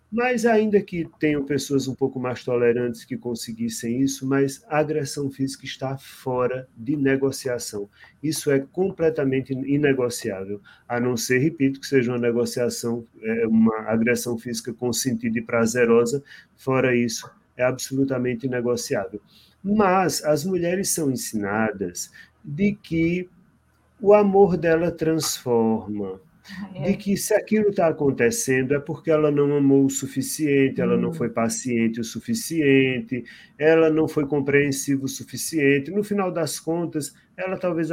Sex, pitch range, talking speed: male, 120-160 Hz, 135 wpm